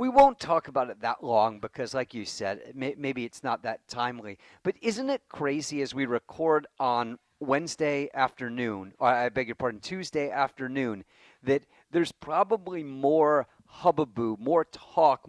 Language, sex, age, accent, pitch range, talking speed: English, male, 40-59, American, 135-180 Hz, 155 wpm